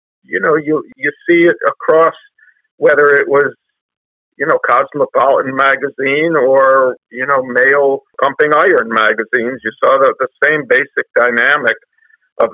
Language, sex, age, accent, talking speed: English, male, 50-69, American, 140 wpm